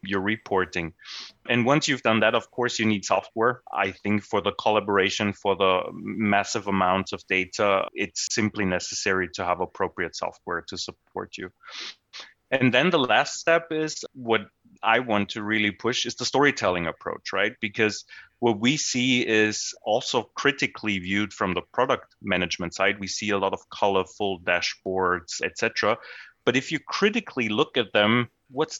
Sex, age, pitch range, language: male, 30-49, 100-125 Hz, English